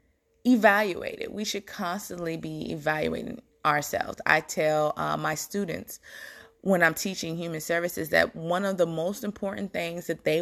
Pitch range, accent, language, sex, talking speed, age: 155-180 Hz, American, English, female, 155 wpm, 20-39